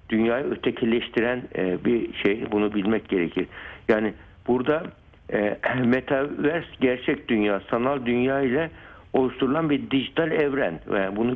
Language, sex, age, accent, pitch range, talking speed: Turkish, male, 60-79, native, 100-130 Hz, 110 wpm